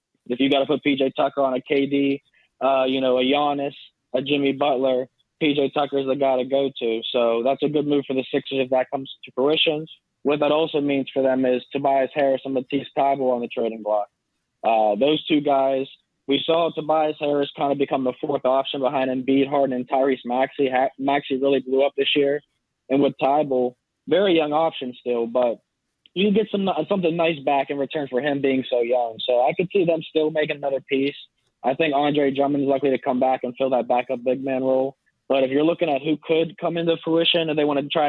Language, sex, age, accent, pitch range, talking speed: English, male, 20-39, American, 130-145 Hz, 220 wpm